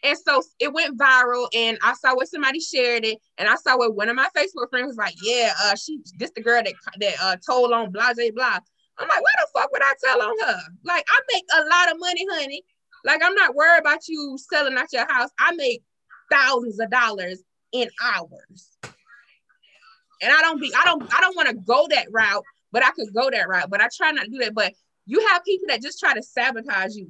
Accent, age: American, 20-39